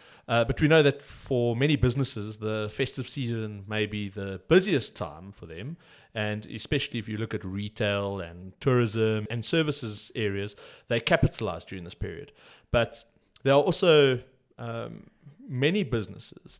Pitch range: 105-135 Hz